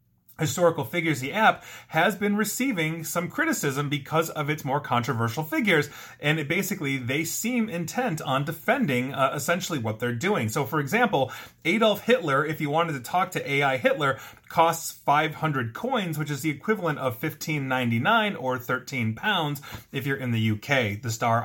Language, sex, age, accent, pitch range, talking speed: English, male, 30-49, American, 130-175 Hz, 165 wpm